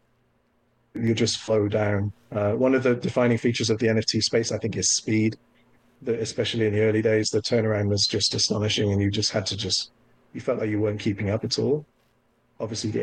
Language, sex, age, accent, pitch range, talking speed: English, male, 30-49, British, 100-115 Hz, 210 wpm